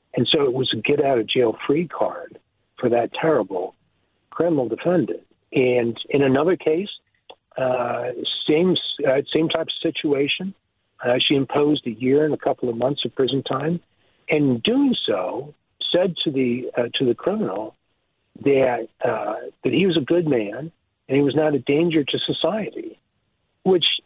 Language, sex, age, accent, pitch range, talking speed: English, male, 60-79, American, 135-190 Hz, 160 wpm